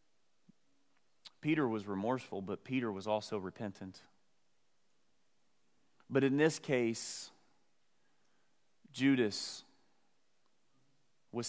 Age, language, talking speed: 30-49, English, 75 wpm